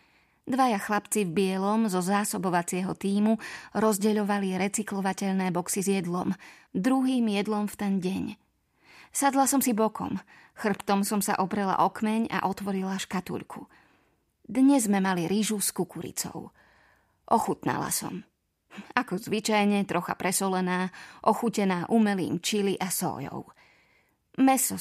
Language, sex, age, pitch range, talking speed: Slovak, female, 20-39, 190-220 Hz, 115 wpm